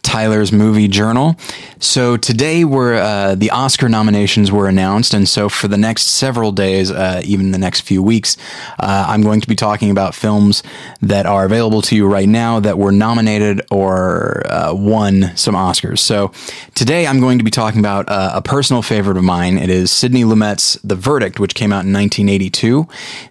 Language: English